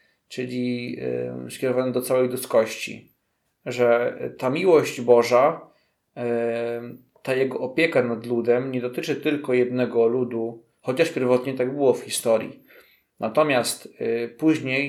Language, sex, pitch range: Polish, male, 120-135 Hz